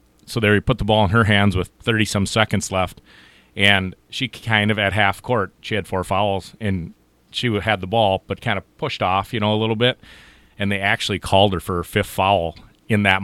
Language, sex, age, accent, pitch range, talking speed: English, male, 30-49, American, 95-110 Hz, 230 wpm